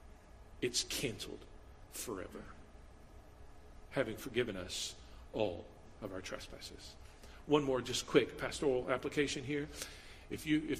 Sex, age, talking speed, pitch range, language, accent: male, 50-69, 110 wpm, 135-205 Hz, English, American